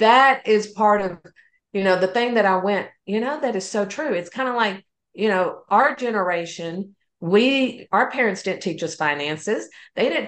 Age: 50-69